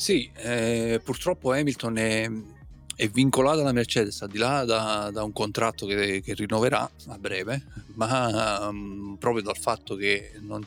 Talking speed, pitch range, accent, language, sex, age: 155 wpm, 100-115 Hz, native, Italian, male, 30-49